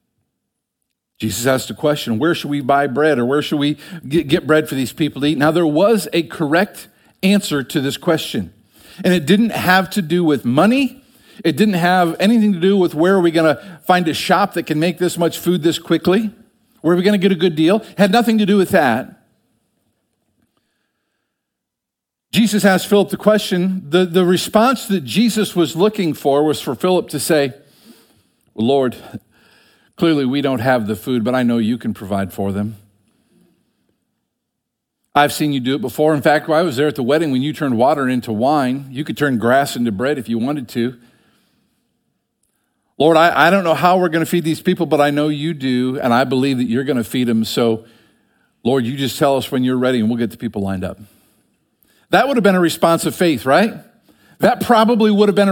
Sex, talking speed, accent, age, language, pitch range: male, 210 wpm, American, 50-69, English, 135-185 Hz